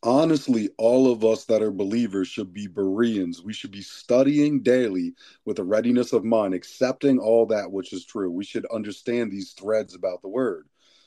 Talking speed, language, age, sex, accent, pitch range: 185 wpm, English, 30-49, male, American, 105-130 Hz